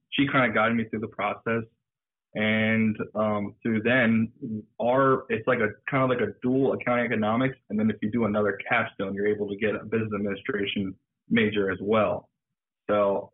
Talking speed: 185 wpm